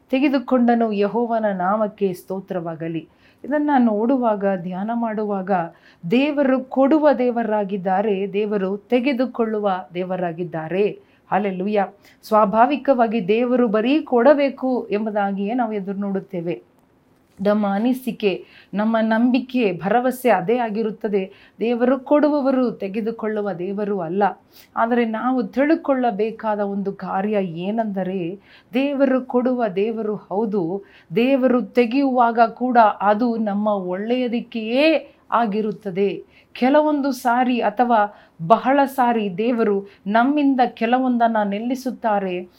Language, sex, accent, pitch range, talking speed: Kannada, female, native, 200-250 Hz, 85 wpm